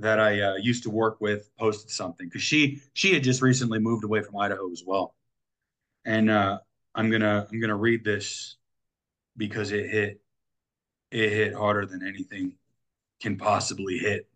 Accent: American